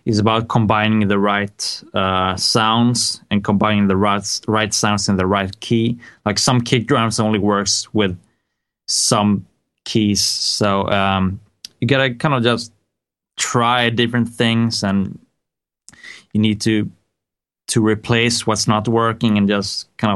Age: 20-39